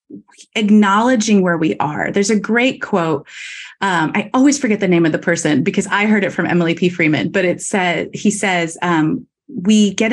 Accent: American